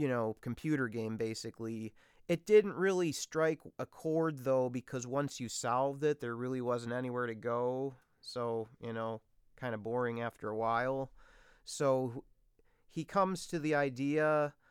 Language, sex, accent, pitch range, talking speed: English, male, American, 115-140 Hz, 155 wpm